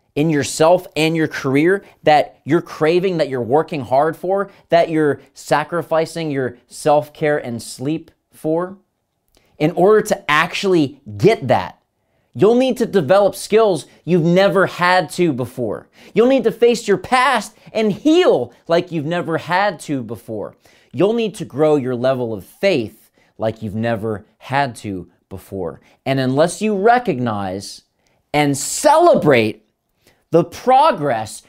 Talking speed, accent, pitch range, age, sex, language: 140 wpm, American, 135-215 Hz, 30-49, male, English